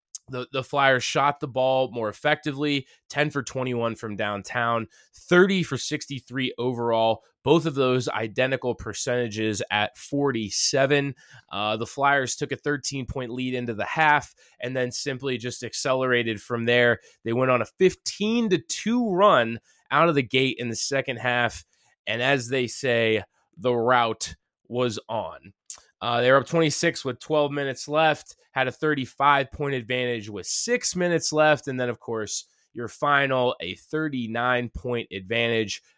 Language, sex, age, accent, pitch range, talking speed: English, male, 20-39, American, 115-145 Hz, 155 wpm